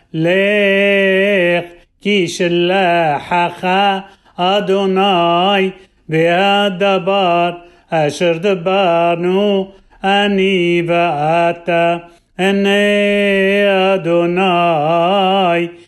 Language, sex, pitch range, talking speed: Hebrew, male, 170-195 Hz, 40 wpm